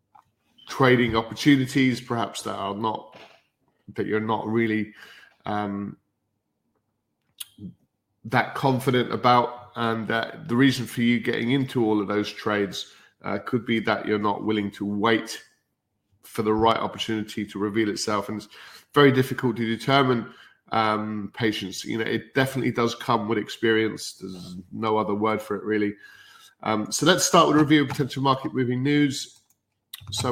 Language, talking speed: English, 155 wpm